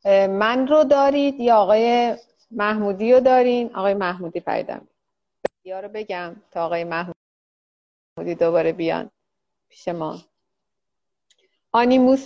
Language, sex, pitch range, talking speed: Persian, female, 195-235 Hz, 105 wpm